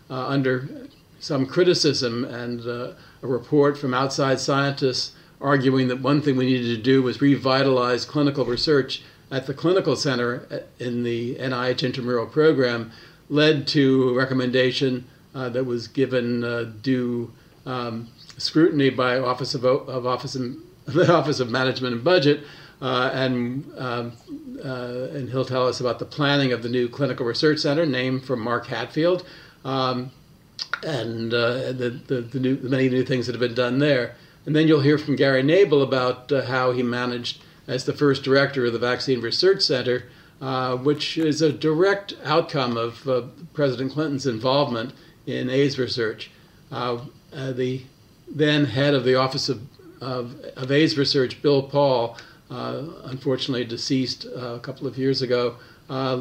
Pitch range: 125-145 Hz